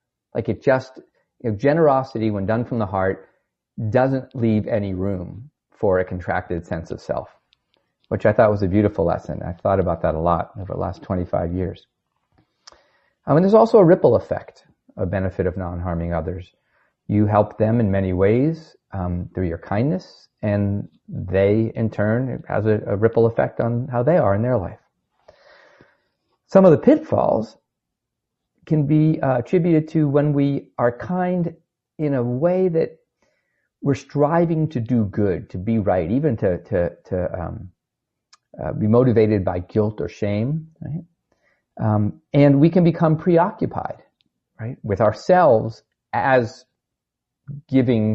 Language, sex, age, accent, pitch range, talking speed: English, male, 40-59, American, 100-145 Hz, 155 wpm